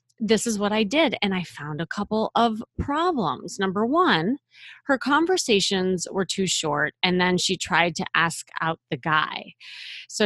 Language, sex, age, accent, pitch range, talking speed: English, female, 30-49, American, 170-240 Hz, 170 wpm